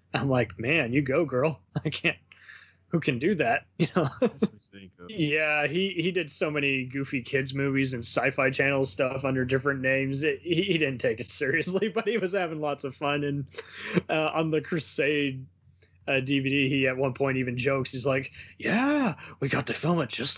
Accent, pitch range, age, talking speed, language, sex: American, 130-155 Hz, 20-39, 190 wpm, English, male